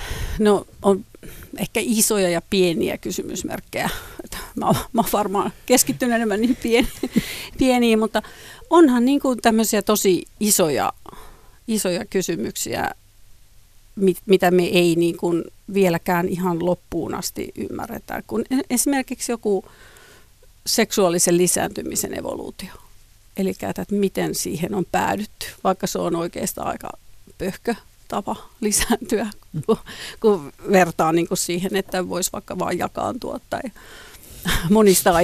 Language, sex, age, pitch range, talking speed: Finnish, female, 50-69, 180-220 Hz, 110 wpm